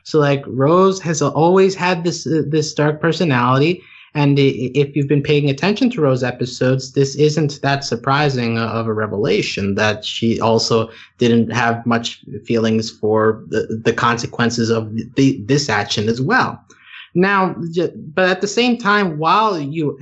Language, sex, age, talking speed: English, male, 20-39, 155 wpm